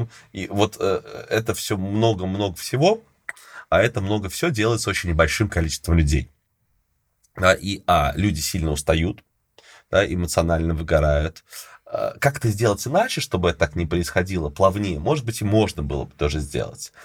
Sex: male